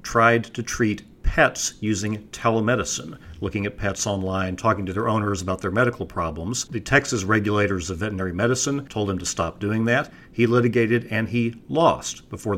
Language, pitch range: English, 95-115 Hz